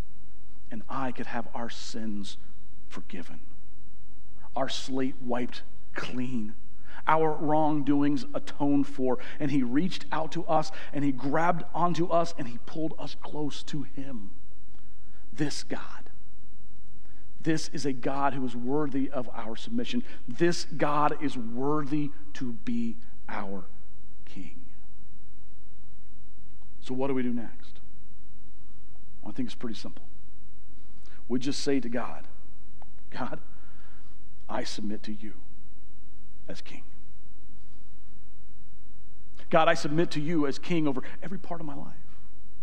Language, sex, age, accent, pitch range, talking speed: English, male, 40-59, American, 95-150 Hz, 125 wpm